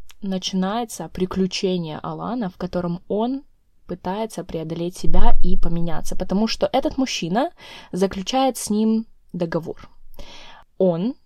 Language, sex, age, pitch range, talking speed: Russian, female, 20-39, 175-215 Hz, 105 wpm